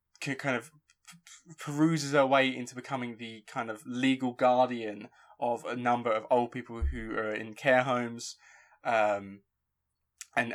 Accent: British